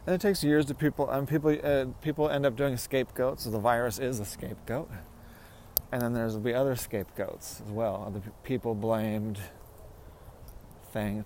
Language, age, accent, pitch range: English, 40-59, American, 95-120 Hz